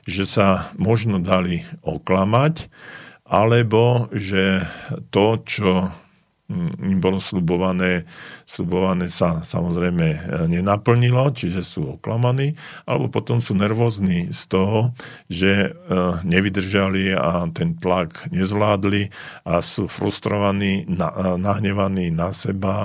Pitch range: 90-105 Hz